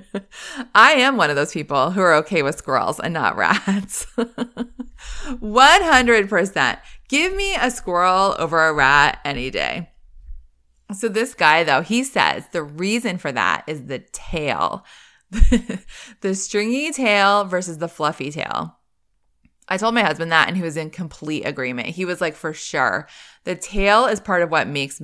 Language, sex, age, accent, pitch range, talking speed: English, female, 20-39, American, 170-260 Hz, 160 wpm